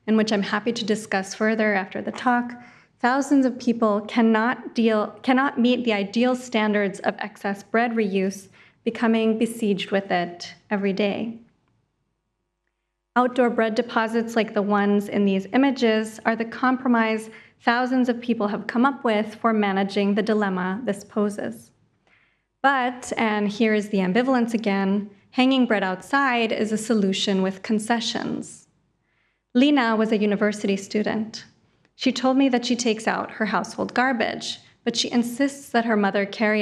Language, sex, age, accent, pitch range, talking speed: English, female, 30-49, American, 200-240 Hz, 150 wpm